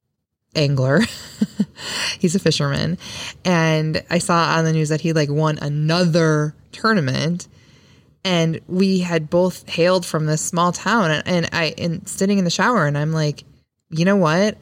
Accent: American